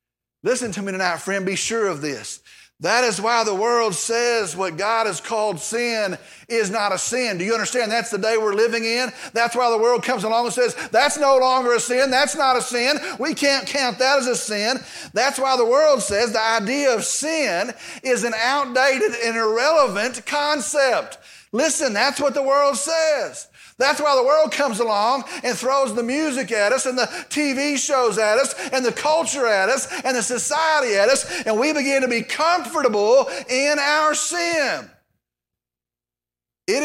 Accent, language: American, English